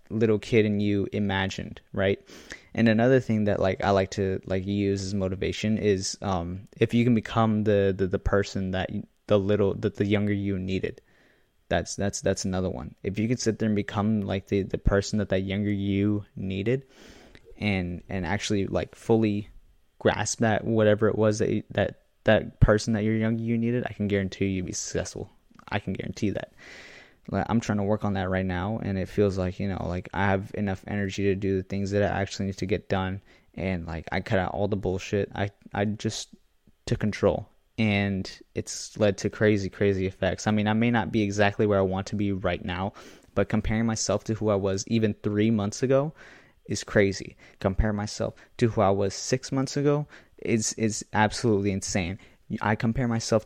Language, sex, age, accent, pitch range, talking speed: English, male, 20-39, American, 95-110 Hz, 200 wpm